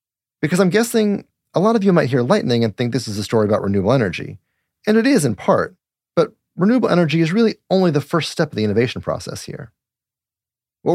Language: English